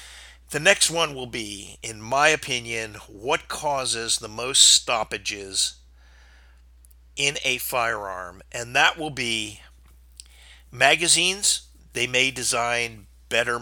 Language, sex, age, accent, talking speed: English, male, 50-69, American, 110 wpm